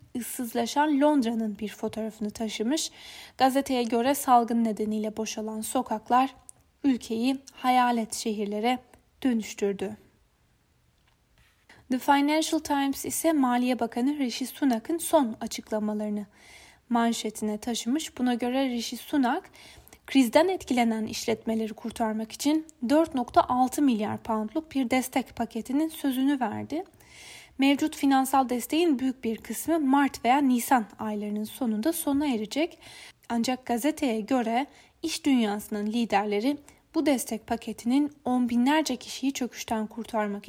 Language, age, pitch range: Turkish, 10-29, 220-280 Hz